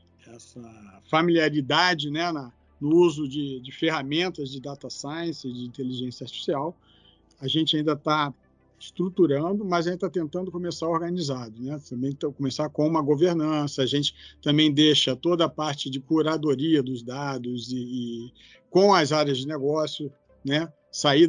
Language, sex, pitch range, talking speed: Portuguese, male, 140-170 Hz, 150 wpm